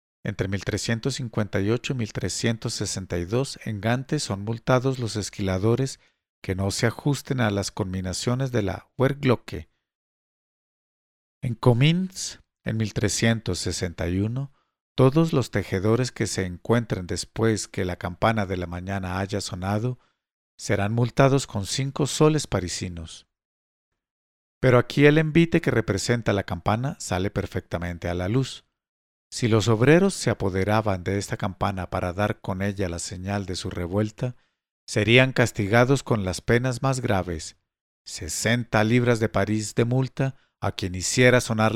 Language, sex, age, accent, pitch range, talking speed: English, male, 50-69, Mexican, 95-120 Hz, 130 wpm